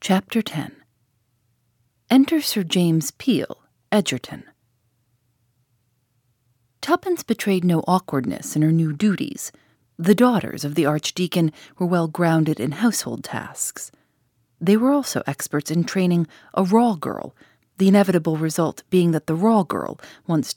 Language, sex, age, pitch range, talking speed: English, female, 40-59, 145-200 Hz, 125 wpm